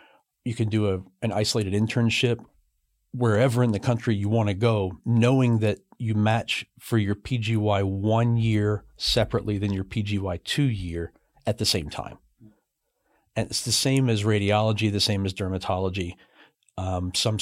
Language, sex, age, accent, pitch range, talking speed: English, male, 40-59, American, 105-125 Hz, 155 wpm